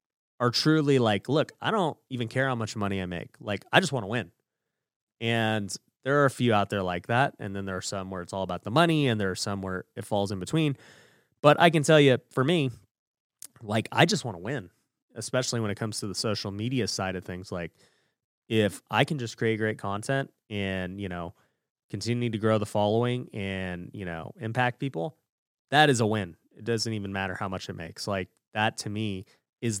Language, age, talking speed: English, 30-49, 215 wpm